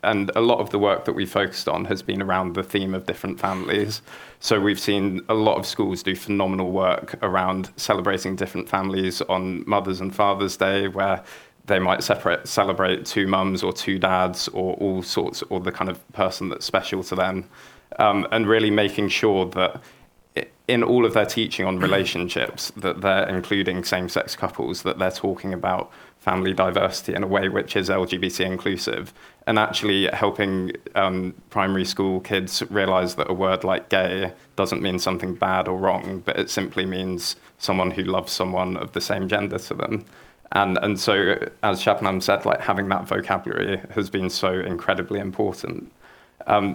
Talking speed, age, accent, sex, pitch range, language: 180 wpm, 20-39, British, male, 95-100 Hz, English